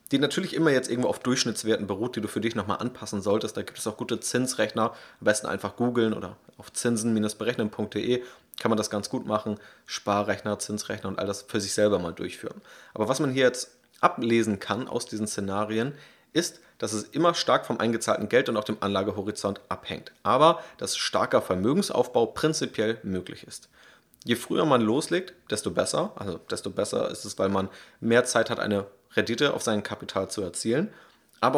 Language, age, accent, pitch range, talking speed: German, 30-49, German, 100-120 Hz, 185 wpm